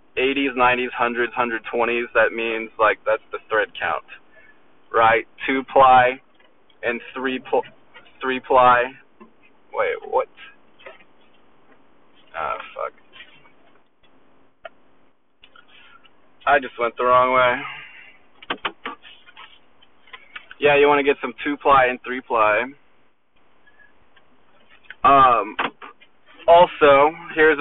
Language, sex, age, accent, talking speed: English, male, 20-39, American, 80 wpm